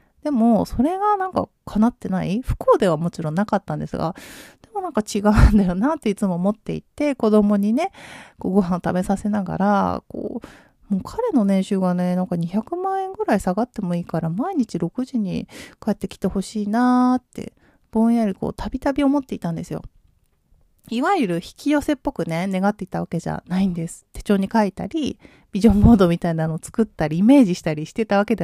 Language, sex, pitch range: Japanese, female, 185-250 Hz